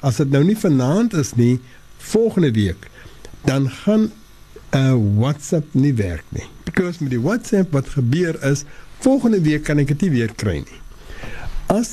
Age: 60-79